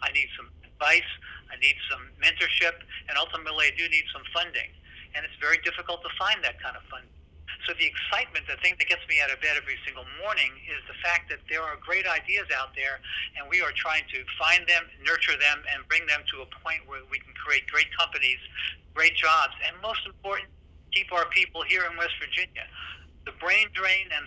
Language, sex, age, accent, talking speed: English, male, 60-79, American, 215 wpm